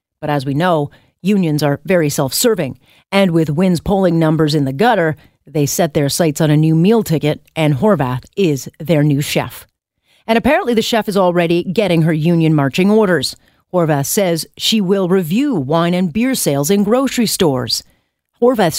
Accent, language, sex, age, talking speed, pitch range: American, English, female, 40-59, 175 wpm, 155-215 Hz